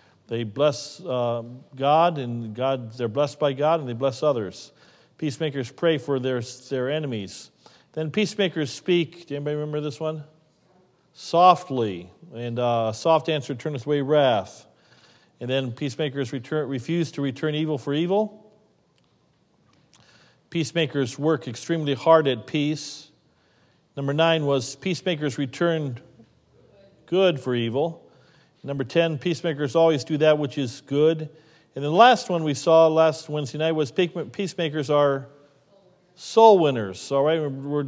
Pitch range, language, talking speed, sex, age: 130-165 Hz, English, 140 wpm, male, 50-69